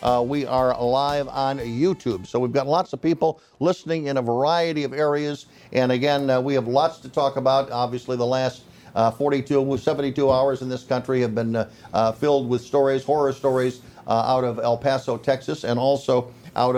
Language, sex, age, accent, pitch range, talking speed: English, male, 50-69, American, 125-150 Hz, 195 wpm